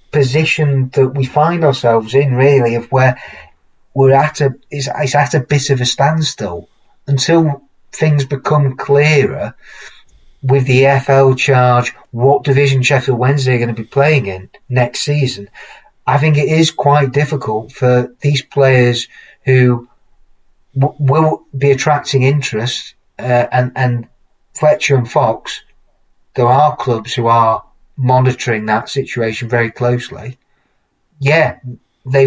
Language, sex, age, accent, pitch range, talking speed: English, male, 40-59, British, 120-140 Hz, 130 wpm